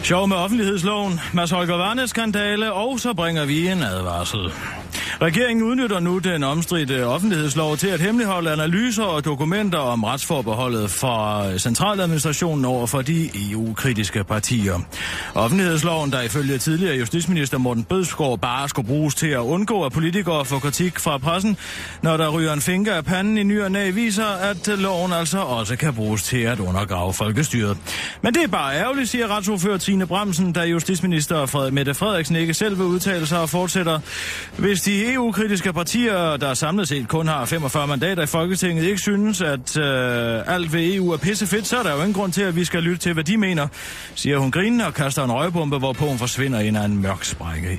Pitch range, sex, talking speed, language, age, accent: 125-190 Hz, male, 180 wpm, Danish, 30-49, native